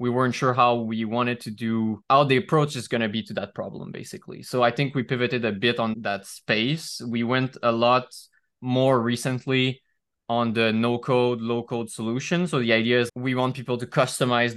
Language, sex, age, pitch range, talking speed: English, male, 20-39, 110-125 Hz, 200 wpm